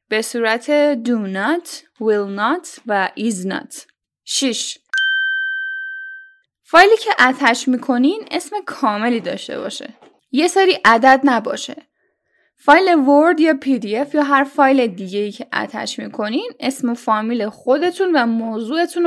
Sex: female